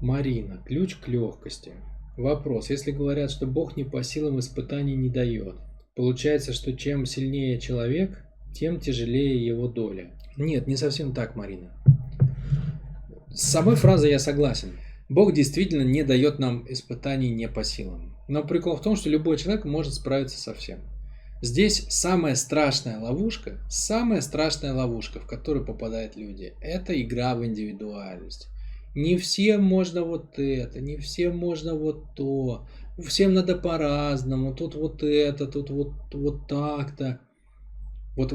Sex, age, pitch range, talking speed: male, 20-39, 120-150 Hz, 140 wpm